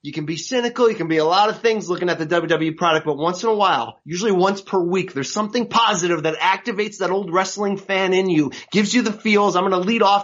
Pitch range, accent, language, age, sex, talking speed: 165-200 Hz, American, English, 30-49, male, 265 wpm